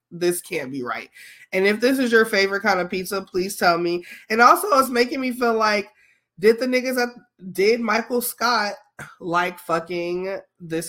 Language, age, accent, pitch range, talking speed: English, 20-39, American, 155-225 Hz, 180 wpm